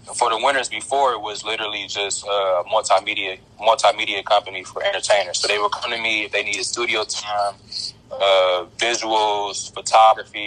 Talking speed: 160 wpm